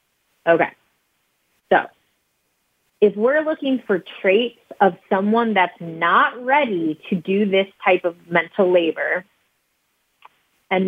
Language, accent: English, American